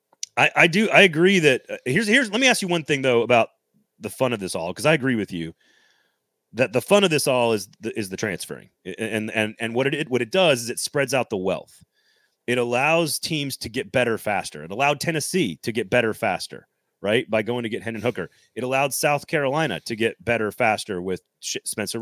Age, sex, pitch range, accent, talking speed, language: 30-49, male, 110-140 Hz, American, 225 wpm, English